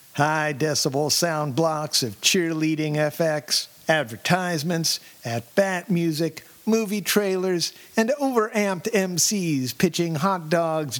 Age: 50-69